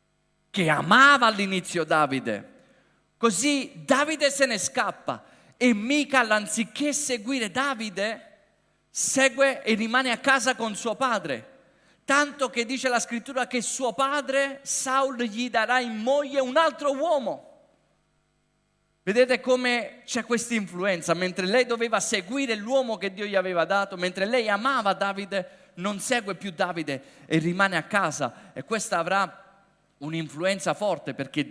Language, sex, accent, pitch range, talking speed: Italian, male, native, 155-235 Hz, 135 wpm